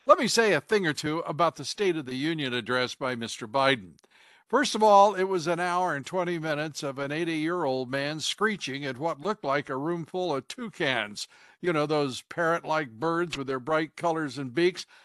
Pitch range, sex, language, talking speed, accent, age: 150-195 Hz, male, English, 205 wpm, American, 60-79